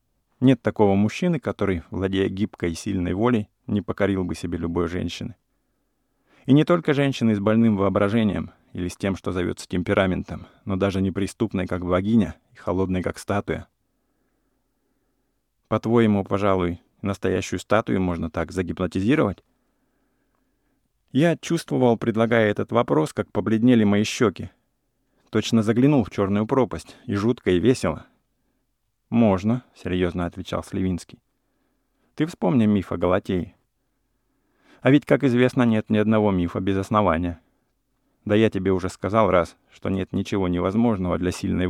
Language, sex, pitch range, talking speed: English, male, 90-120 Hz, 135 wpm